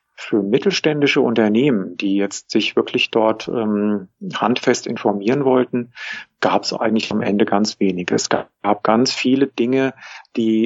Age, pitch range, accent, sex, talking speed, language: 40-59, 105-130 Hz, German, male, 145 wpm, German